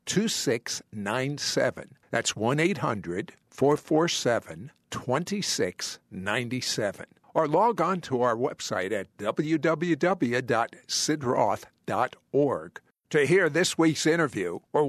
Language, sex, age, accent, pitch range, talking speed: English, male, 60-79, American, 135-175 Hz, 70 wpm